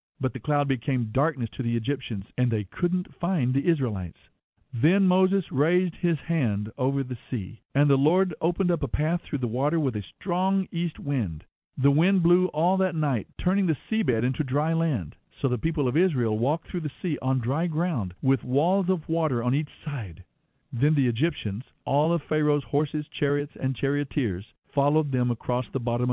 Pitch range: 125-170 Hz